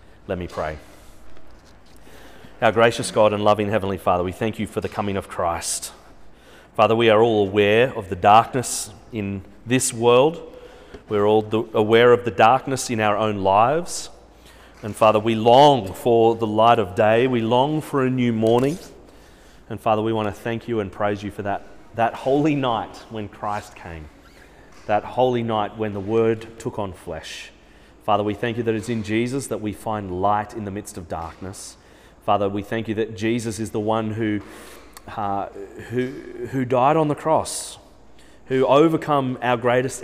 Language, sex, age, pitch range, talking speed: English, male, 30-49, 105-125 Hz, 180 wpm